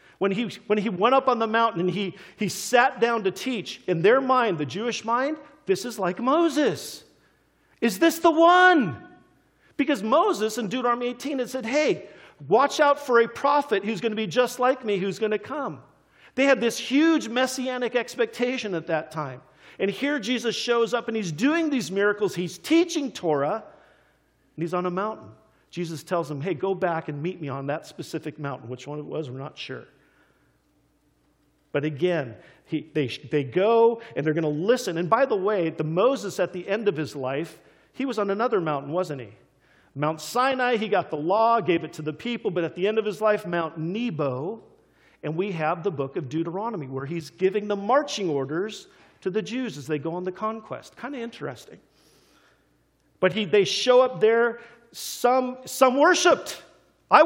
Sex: male